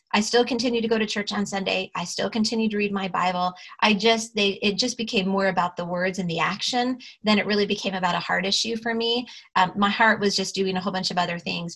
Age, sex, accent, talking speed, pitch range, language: 30-49, female, American, 260 wpm, 190-220 Hz, English